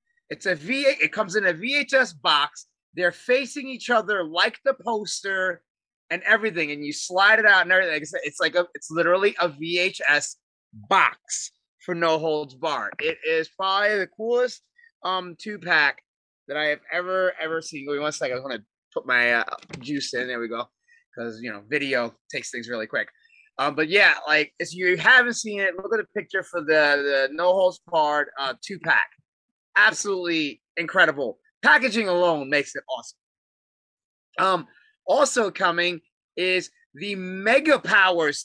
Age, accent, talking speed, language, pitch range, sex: 30-49, American, 175 wpm, English, 150-210 Hz, male